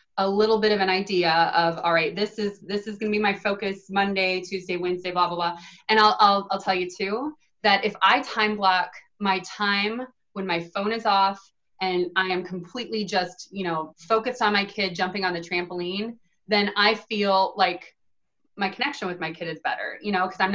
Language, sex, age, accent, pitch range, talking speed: English, female, 20-39, American, 180-215 Hz, 215 wpm